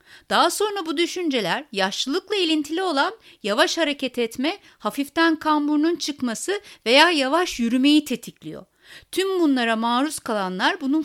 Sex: female